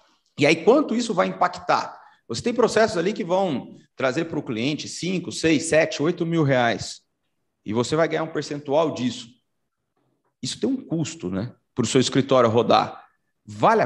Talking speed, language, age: 175 wpm, Portuguese, 40-59